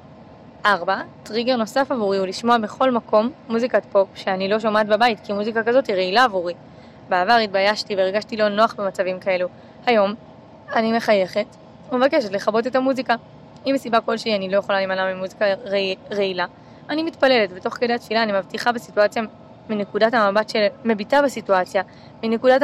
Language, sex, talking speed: English, female, 155 wpm